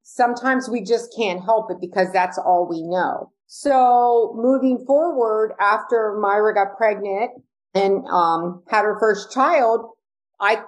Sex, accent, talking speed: female, American, 140 wpm